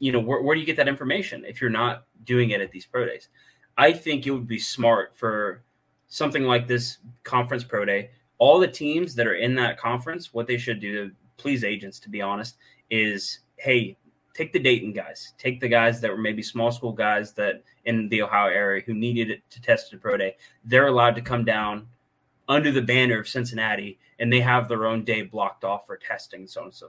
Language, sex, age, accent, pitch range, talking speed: English, male, 20-39, American, 110-130 Hz, 225 wpm